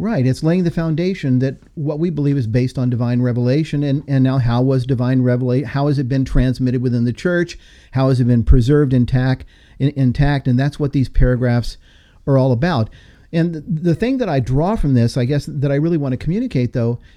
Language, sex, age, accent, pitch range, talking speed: English, male, 50-69, American, 125-160 Hz, 220 wpm